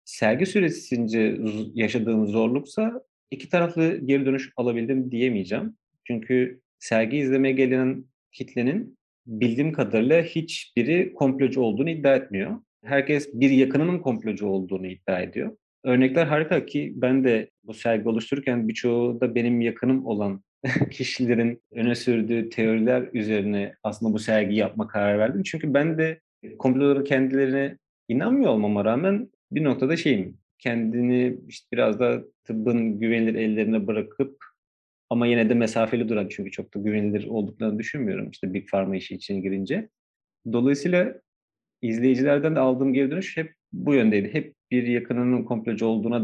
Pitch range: 110-140 Hz